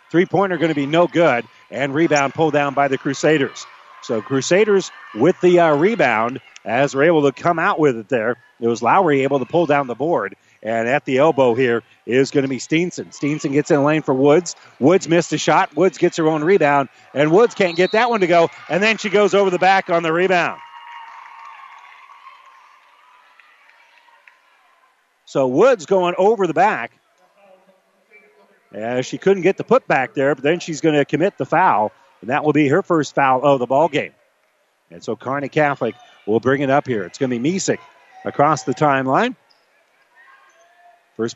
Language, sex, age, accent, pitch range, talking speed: English, male, 40-59, American, 135-170 Hz, 195 wpm